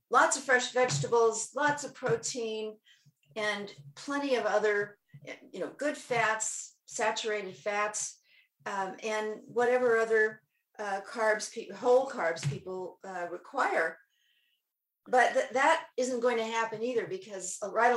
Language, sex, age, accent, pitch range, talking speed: English, female, 50-69, American, 175-230 Hz, 125 wpm